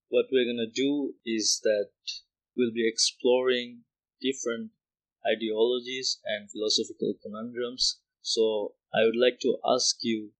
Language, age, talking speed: English, 20-39, 125 wpm